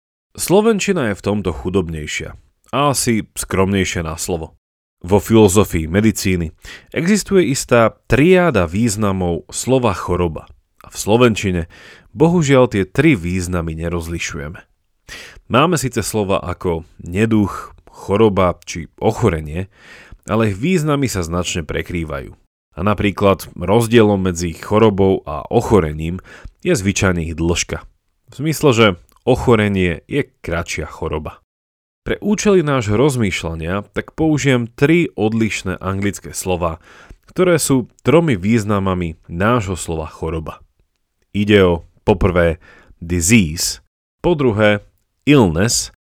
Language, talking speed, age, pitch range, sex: Slovak, 105 wpm, 30-49, 85-120 Hz, male